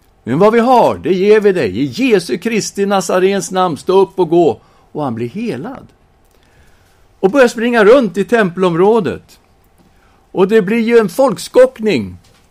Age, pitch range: 60-79, 100-165 Hz